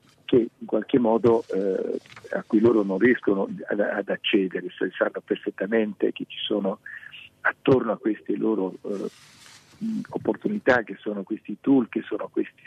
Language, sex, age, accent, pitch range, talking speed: Italian, male, 50-69, native, 105-140 Hz, 145 wpm